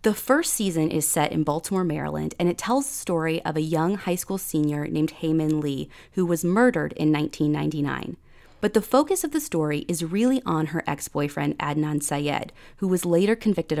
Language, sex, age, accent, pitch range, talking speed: English, female, 30-49, American, 160-225 Hz, 190 wpm